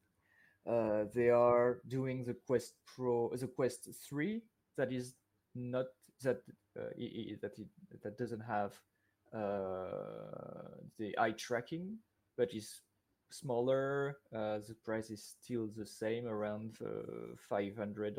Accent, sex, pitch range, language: French, male, 105-120 Hz, English